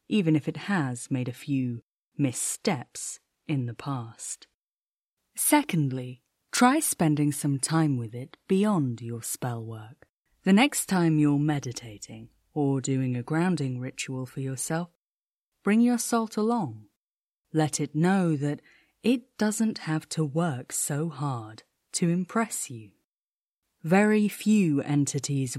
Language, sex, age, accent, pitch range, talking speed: English, female, 30-49, British, 130-190 Hz, 130 wpm